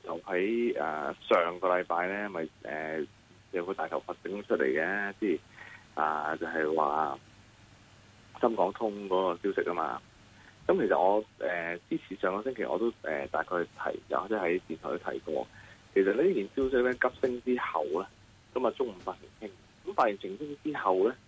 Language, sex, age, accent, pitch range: Chinese, male, 20-39, native, 95-125 Hz